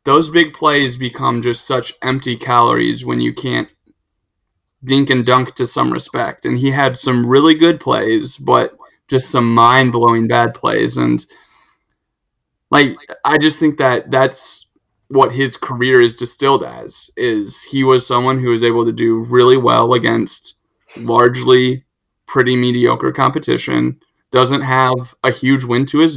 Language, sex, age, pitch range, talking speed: English, male, 20-39, 120-135 Hz, 150 wpm